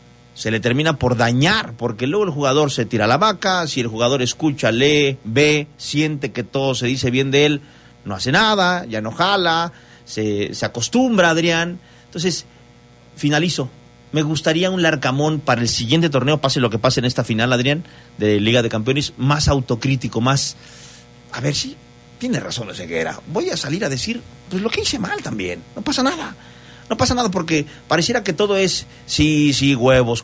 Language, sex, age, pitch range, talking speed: Spanish, male, 40-59, 120-160 Hz, 185 wpm